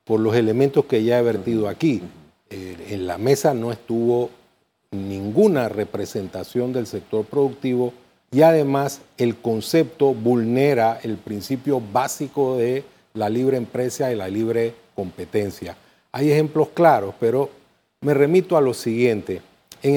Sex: male